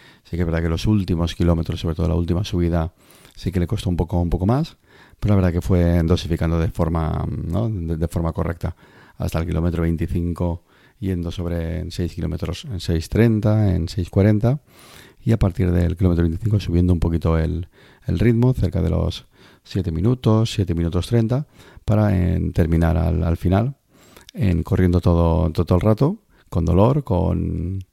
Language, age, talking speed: Spanish, 30-49, 180 wpm